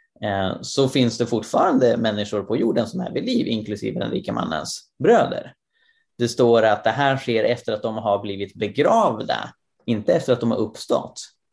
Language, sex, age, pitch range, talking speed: Swedish, male, 30-49, 105-135 Hz, 175 wpm